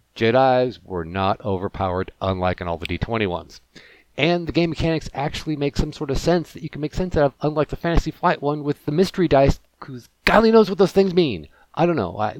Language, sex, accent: English, male, American